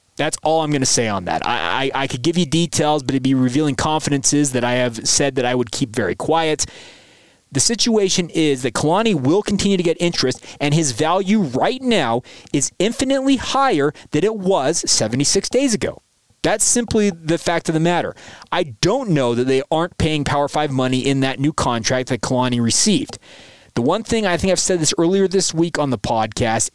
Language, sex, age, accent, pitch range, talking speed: English, male, 30-49, American, 130-180 Hz, 205 wpm